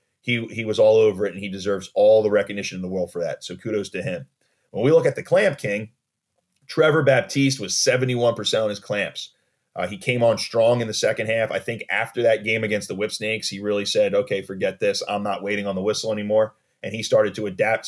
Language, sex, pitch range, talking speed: English, male, 110-140 Hz, 240 wpm